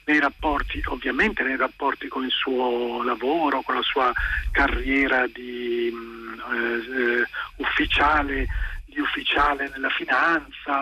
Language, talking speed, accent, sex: Italian, 110 wpm, native, male